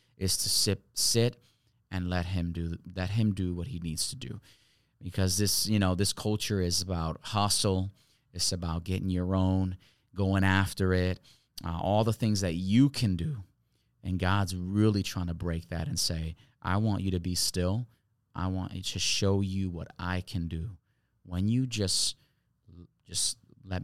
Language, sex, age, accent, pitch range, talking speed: English, male, 30-49, American, 95-120 Hz, 175 wpm